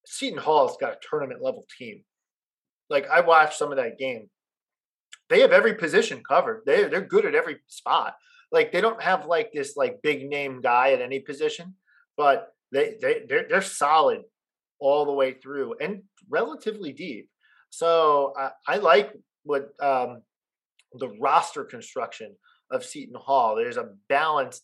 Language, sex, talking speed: English, male, 160 wpm